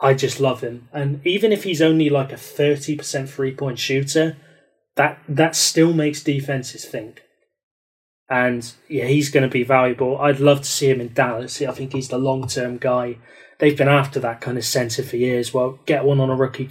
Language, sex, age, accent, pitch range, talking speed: English, male, 20-39, British, 130-145 Hz, 210 wpm